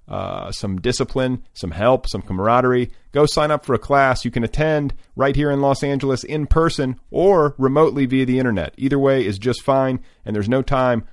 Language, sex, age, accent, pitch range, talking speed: English, male, 40-59, American, 110-130 Hz, 200 wpm